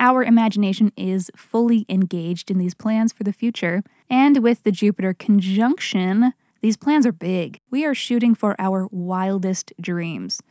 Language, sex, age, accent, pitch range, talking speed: English, female, 20-39, American, 190-240 Hz, 155 wpm